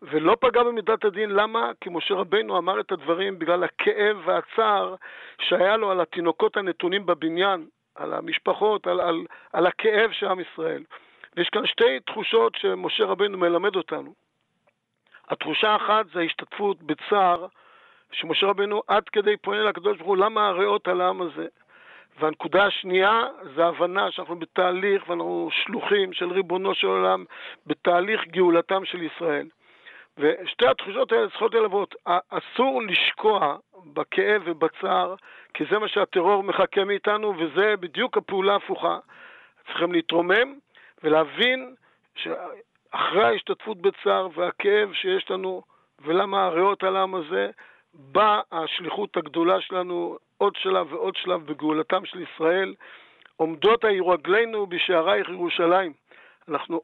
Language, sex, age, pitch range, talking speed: Hebrew, male, 50-69, 175-220 Hz, 125 wpm